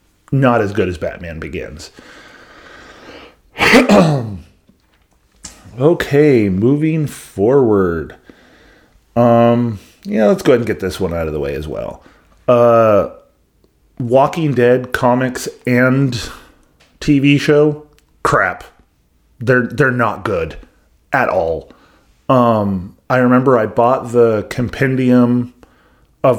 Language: English